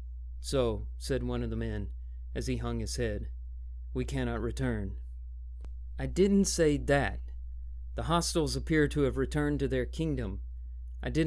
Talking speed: 155 wpm